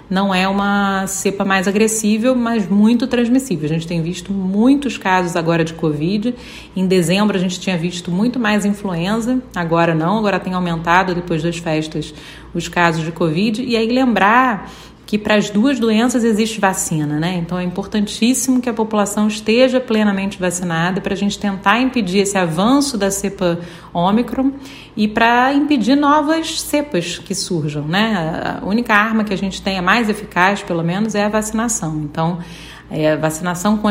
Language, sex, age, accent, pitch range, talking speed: Portuguese, female, 40-59, Brazilian, 170-215 Hz, 170 wpm